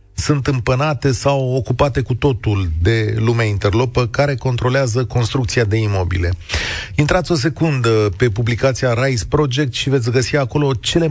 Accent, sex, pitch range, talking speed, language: native, male, 105-145 Hz, 140 wpm, Romanian